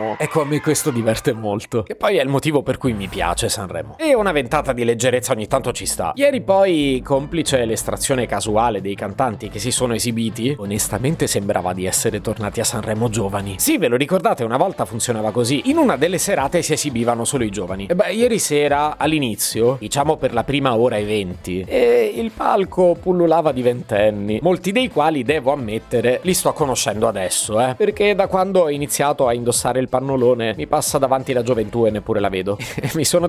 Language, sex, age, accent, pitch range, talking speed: Italian, male, 30-49, native, 110-155 Hz, 200 wpm